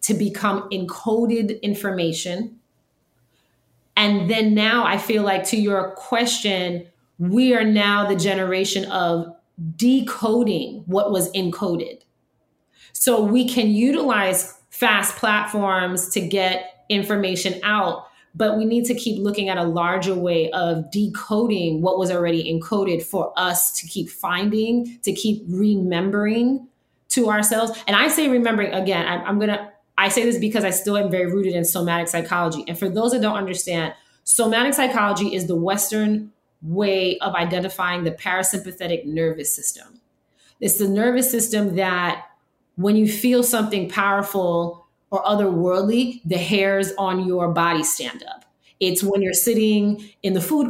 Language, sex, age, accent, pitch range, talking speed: English, female, 30-49, American, 180-220 Hz, 145 wpm